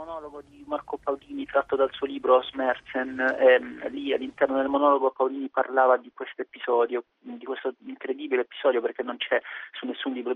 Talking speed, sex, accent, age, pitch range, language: 170 wpm, male, native, 30-49, 125-140 Hz, Italian